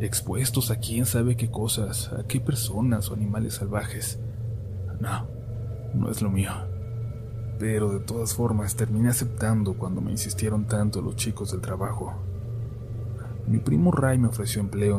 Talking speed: 150 wpm